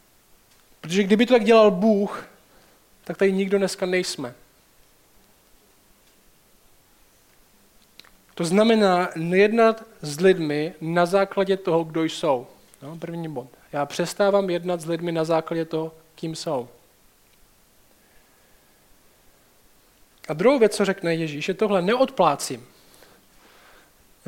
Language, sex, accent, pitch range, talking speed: Czech, male, native, 175-215 Hz, 110 wpm